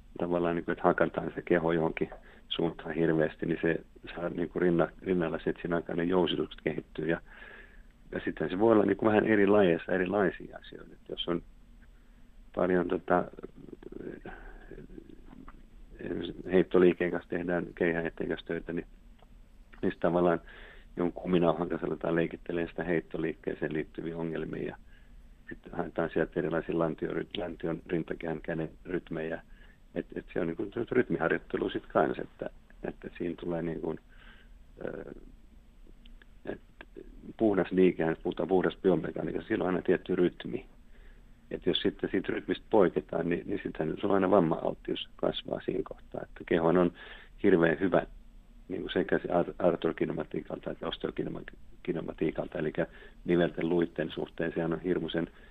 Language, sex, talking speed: Finnish, male, 130 wpm